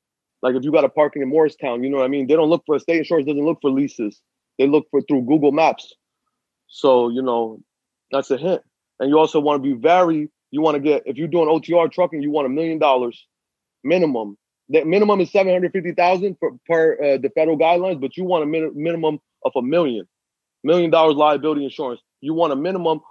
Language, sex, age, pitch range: English, male, 20-39, 135-160 Hz